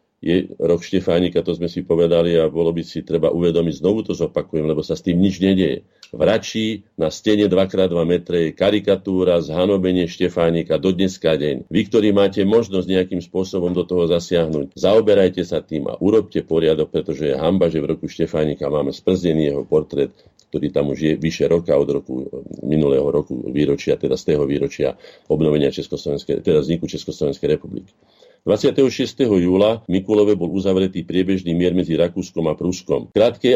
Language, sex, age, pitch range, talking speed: Slovak, male, 50-69, 80-95 Hz, 160 wpm